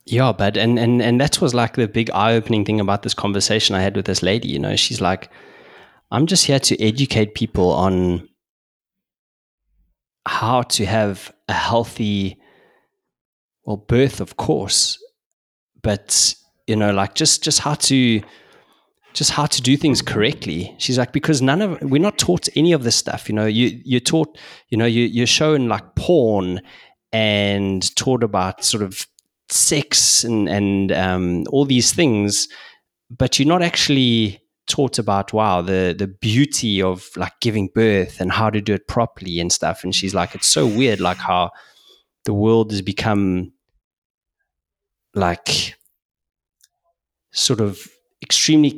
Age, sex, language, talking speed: 20-39, male, English, 155 wpm